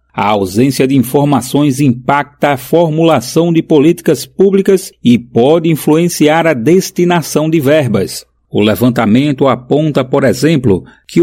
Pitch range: 130-160 Hz